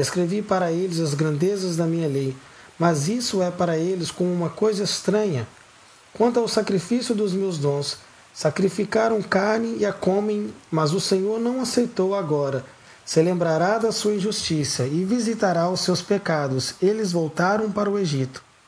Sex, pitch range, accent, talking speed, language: male, 155-210 Hz, Brazilian, 155 wpm, English